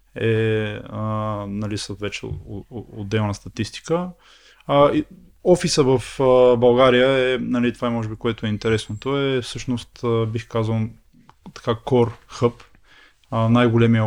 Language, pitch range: Bulgarian, 110-125 Hz